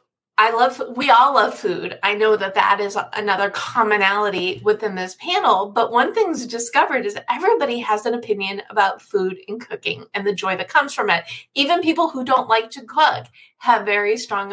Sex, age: female, 20-39